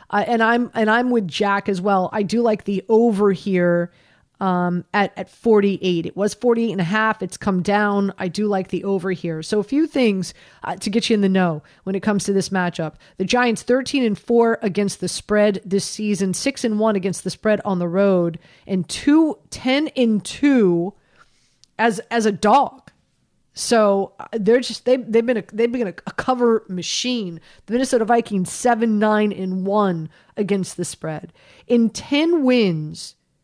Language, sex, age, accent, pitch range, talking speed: English, female, 30-49, American, 185-235 Hz, 190 wpm